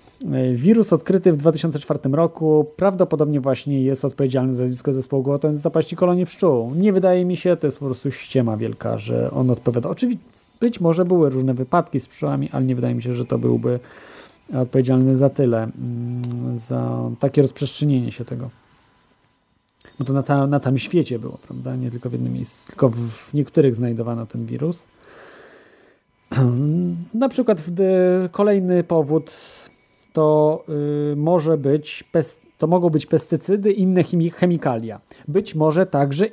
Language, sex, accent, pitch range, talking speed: Polish, male, native, 130-175 Hz, 155 wpm